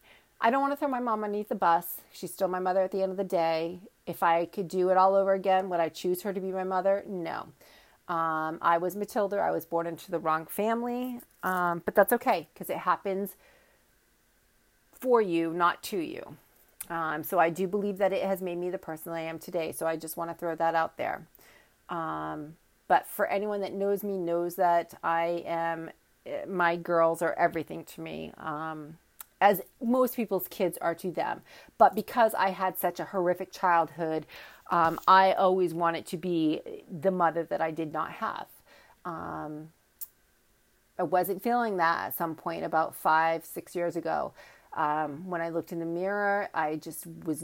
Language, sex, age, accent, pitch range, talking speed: English, female, 40-59, American, 165-195 Hz, 195 wpm